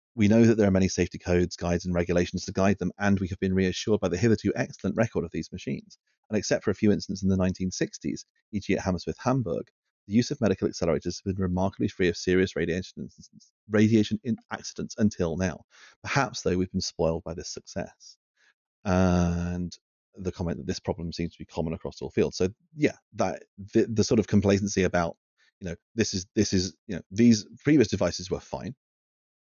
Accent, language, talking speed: British, English, 200 wpm